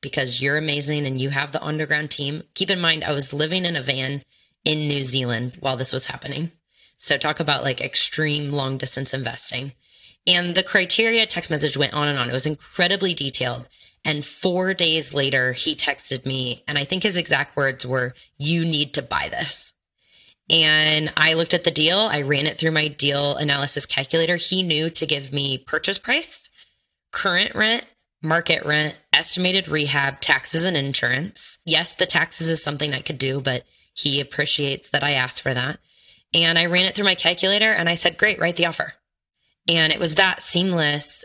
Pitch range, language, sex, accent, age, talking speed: 140-170 Hz, English, female, American, 20-39, 190 wpm